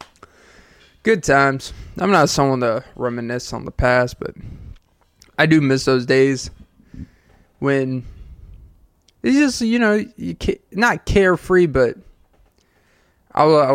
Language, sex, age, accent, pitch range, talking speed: English, male, 20-39, American, 125-150 Hz, 115 wpm